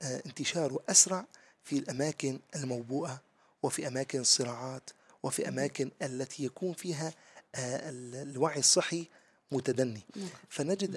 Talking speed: 95 wpm